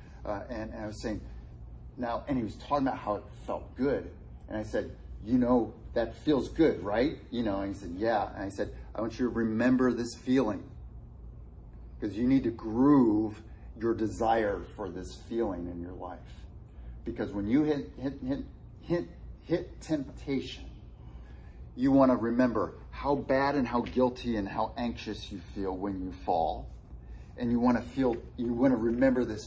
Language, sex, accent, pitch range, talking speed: English, male, American, 105-130 Hz, 185 wpm